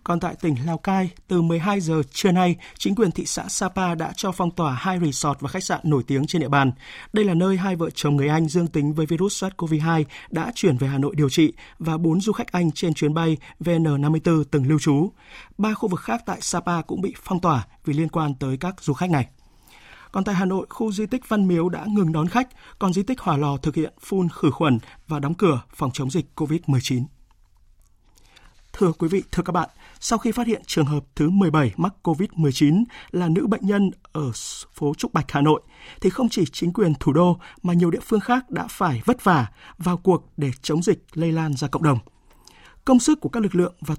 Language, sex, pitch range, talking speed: Vietnamese, male, 150-195 Hz, 230 wpm